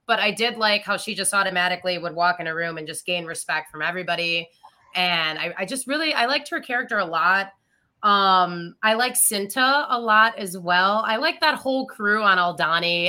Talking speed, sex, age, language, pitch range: 205 wpm, female, 20-39, English, 160-205 Hz